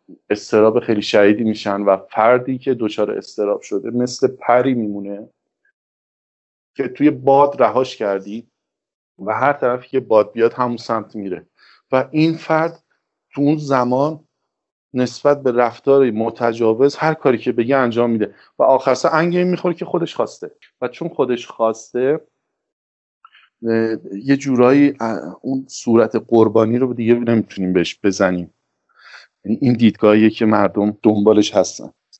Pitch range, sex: 105-125 Hz, male